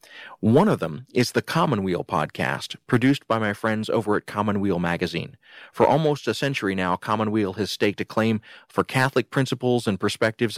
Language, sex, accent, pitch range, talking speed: English, male, American, 100-120 Hz, 170 wpm